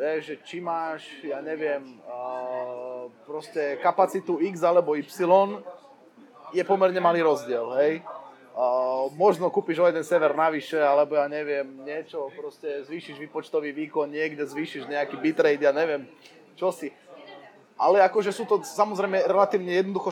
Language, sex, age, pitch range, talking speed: Slovak, male, 20-39, 145-185 Hz, 130 wpm